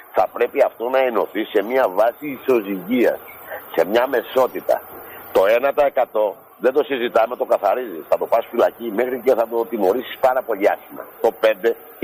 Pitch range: 125-185 Hz